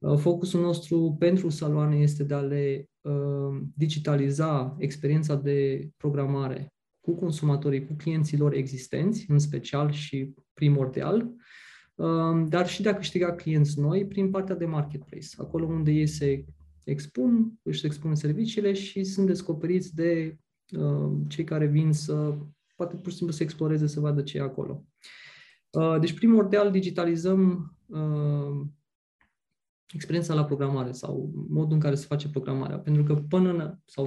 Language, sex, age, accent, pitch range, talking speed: Romanian, male, 20-39, native, 145-175 Hz, 145 wpm